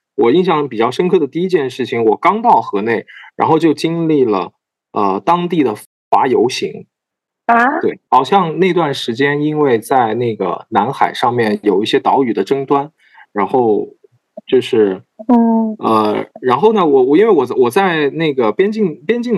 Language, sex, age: Chinese, male, 20-39